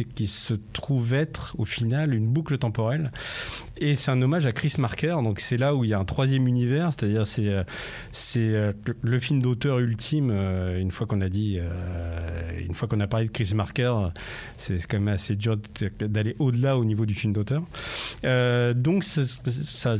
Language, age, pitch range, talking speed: French, 40-59, 110-135 Hz, 185 wpm